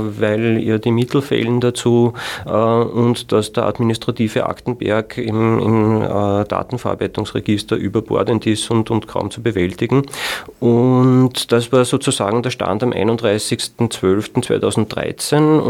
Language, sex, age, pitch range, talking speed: German, male, 40-59, 105-120 Hz, 120 wpm